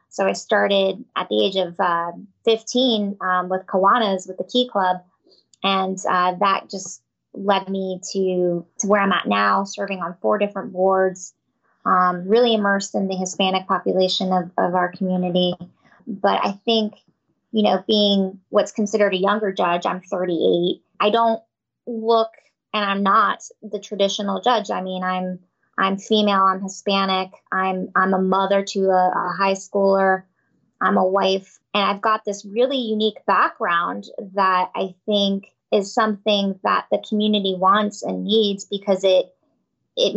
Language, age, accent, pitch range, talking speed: English, 20-39, American, 185-215 Hz, 160 wpm